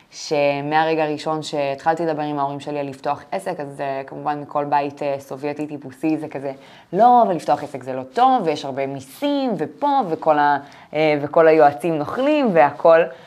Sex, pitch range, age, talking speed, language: female, 145-165 Hz, 20-39, 155 wpm, Hebrew